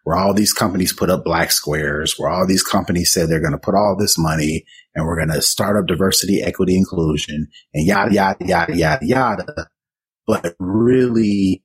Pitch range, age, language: 90-110 Hz, 30-49, English